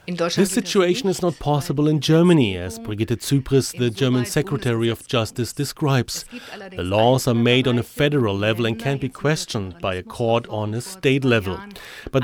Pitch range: 115-150 Hz